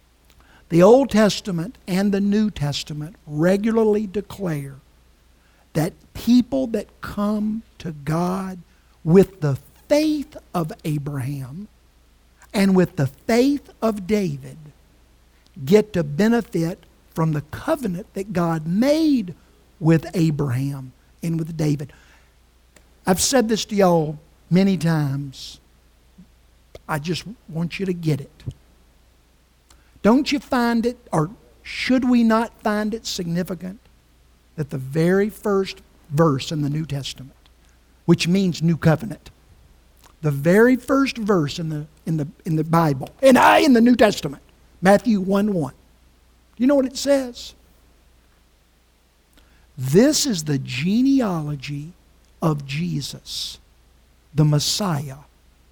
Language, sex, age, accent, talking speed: English, male, 60-79, American, 115 wpm